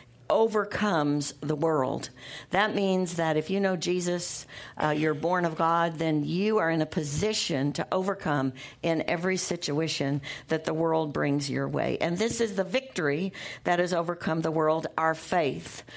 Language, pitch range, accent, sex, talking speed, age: English, 150-185 Hz, American, female, 165 wpm, 60-79